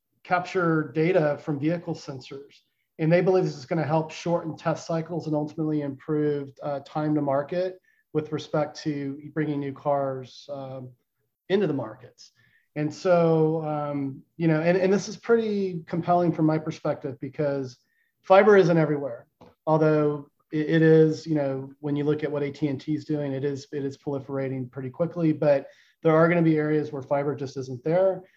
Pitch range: 140-165 Hz